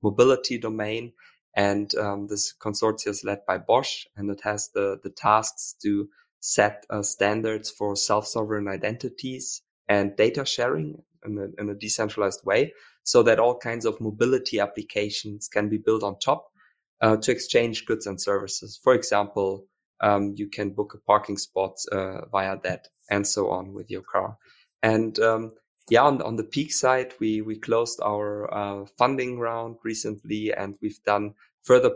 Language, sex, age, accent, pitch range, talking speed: English, male, 20-39, German, 100-115 Hz, 165 wpm